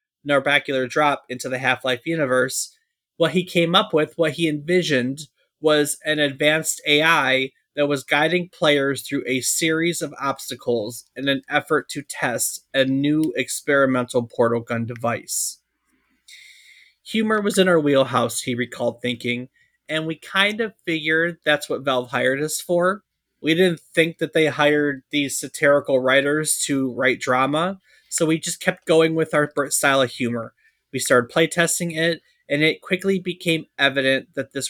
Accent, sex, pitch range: American, male, 135-165 Hz